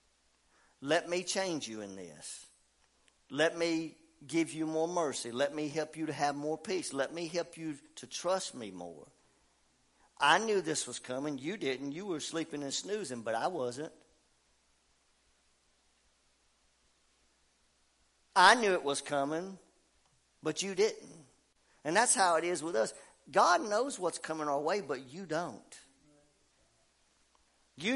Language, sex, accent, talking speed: English, male, American, 145 wpm